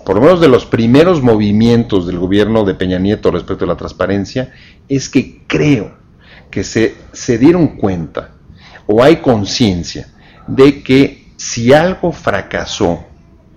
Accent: Mexican